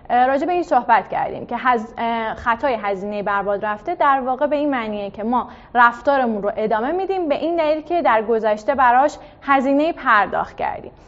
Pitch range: 230-300 Hz